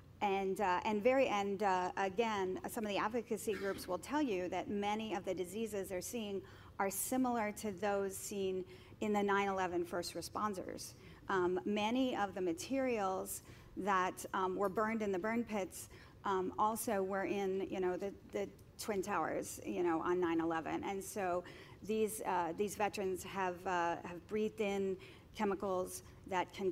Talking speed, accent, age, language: 165 wpm, American, 40-59, English